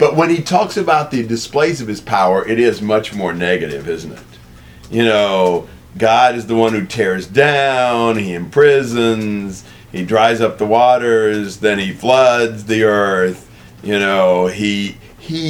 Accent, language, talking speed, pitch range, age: American, English, 165 wpm, 95-120 Hz, 40-59